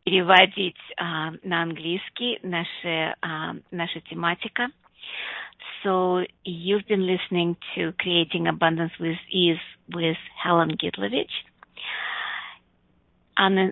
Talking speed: 65 wpm